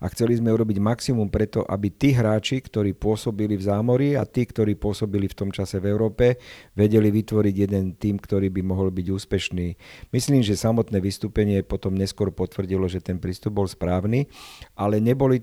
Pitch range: 100-110 Hz